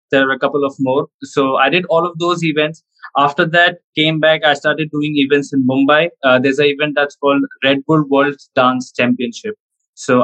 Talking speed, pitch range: 205 wpm, 135-160 Hz